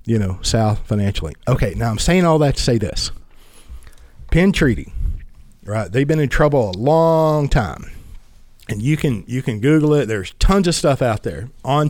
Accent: American